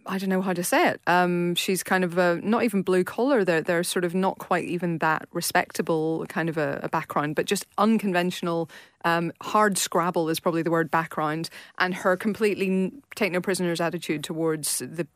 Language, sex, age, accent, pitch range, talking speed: English, female, 30-49, British, 170-195 Hz, 200 wpm